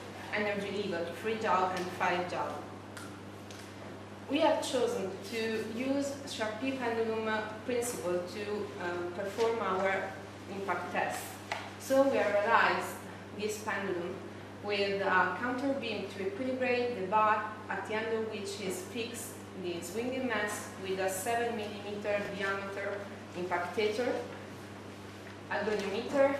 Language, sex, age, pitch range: English, female, 20-39, 175-225 Hz